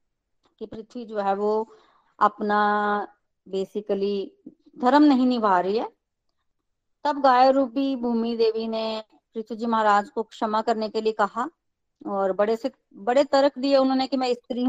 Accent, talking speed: native, 145 wpm